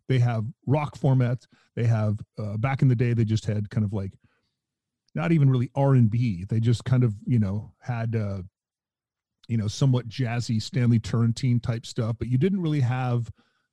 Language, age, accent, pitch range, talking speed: English, 40-59, American, 115-135 Hz, 185 wpm